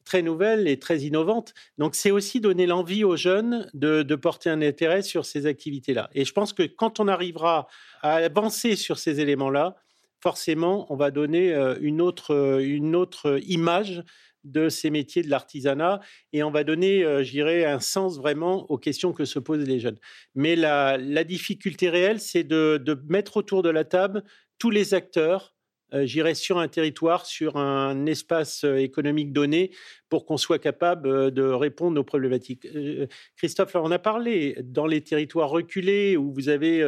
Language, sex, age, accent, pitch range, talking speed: French, male, 40-59, French, 145-180 Hz, 170 wpm